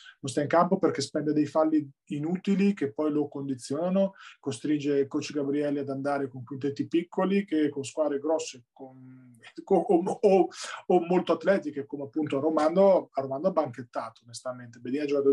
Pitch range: 140-175 Hz